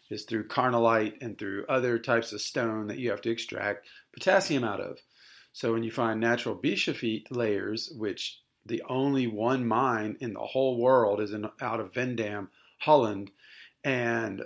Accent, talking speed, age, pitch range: American, 160 wpm, 40-59, 115-130 Hz